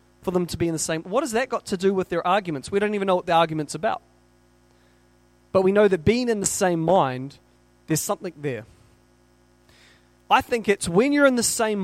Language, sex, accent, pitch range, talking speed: English, male, Australian, 150-220 Hz, 225 wpm